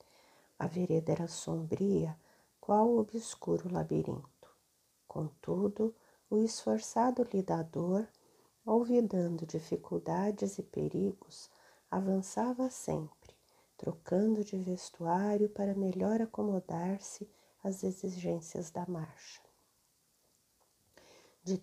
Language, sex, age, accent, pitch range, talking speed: Portuguese, female, 40-59, Brazilian, 170-215 Hz, 80 wpm